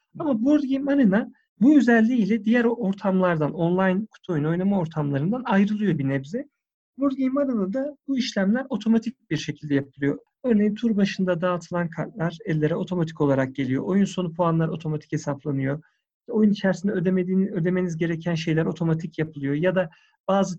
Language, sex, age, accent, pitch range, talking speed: Turkish, male, 50-69, native, 155-215 Hz, 145 wpm